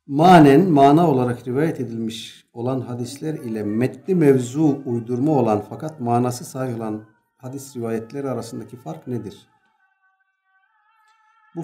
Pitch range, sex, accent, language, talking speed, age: 125-160 Hz, male, native, Turkish, 110 wpm, 60-79